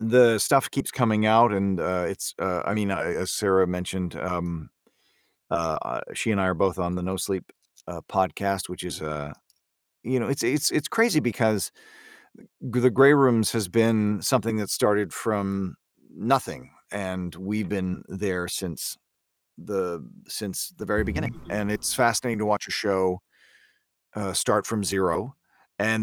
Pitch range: 95-110 Hz